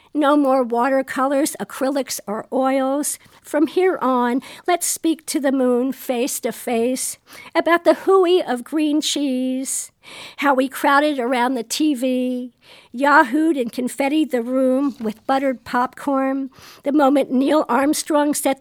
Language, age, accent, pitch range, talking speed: English, 50-69, American, 245-285 Hz, 135 wpm